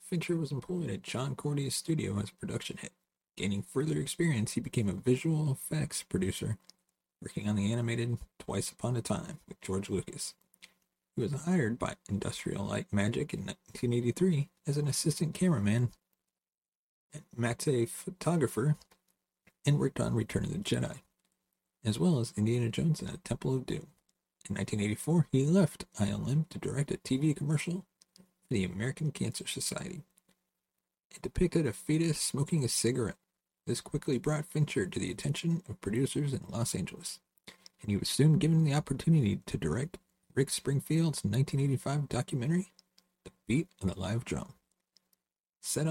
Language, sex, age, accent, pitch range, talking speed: English, male, 40-59, American, 120-170 Hz, 155 wpm